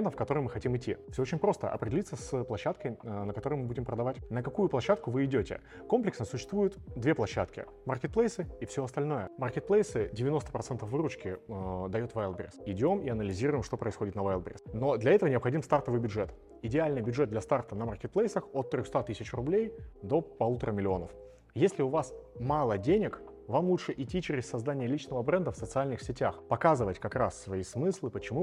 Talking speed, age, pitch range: 175 wpm, 30-49, 110-150 Hz